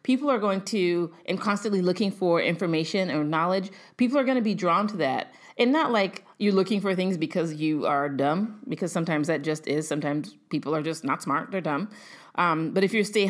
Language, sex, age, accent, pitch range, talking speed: English, female, 30-49, American, 160-205 Hz, 215 wpm